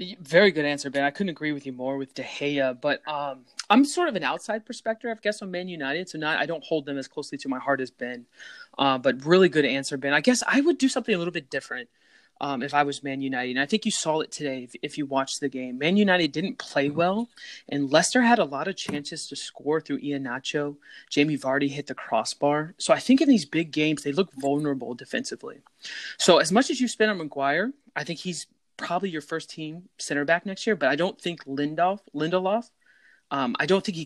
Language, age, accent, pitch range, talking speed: English, 20-39, American, 140-185 Hz, 240 wpm